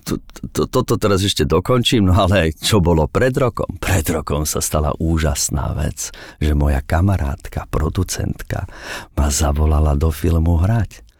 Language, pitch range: Slovak, 80-100 Hz